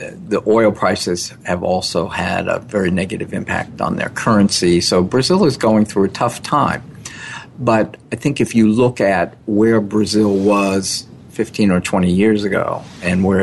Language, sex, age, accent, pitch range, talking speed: English, male, 50-69, American, 90-110 Hz, 170 wpm